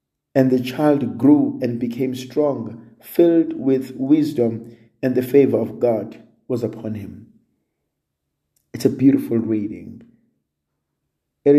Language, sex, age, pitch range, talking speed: English, male, 50-69, 105-145 Hz, 120 wpm